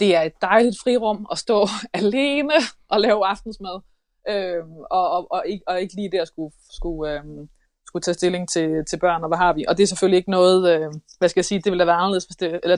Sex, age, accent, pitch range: female, 20-39, Danish, 175-215 Hz